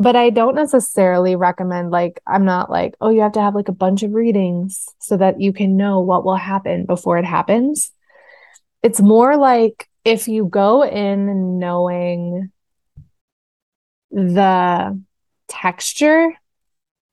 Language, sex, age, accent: English, female, 20-39, American